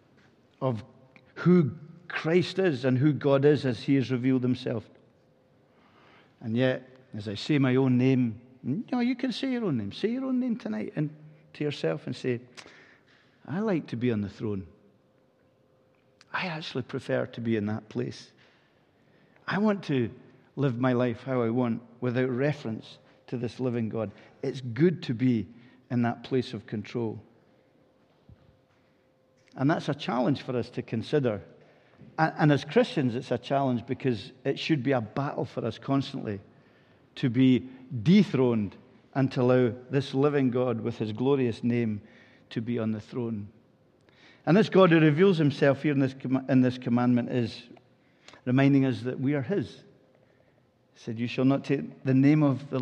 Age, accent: 50-69, British